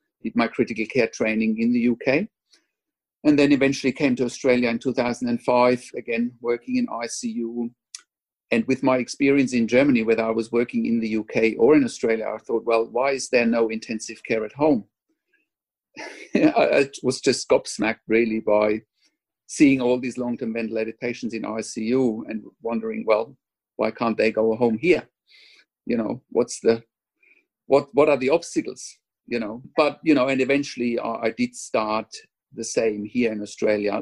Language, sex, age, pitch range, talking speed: English, male, 50-69, 110-135 Hz, 170 wpm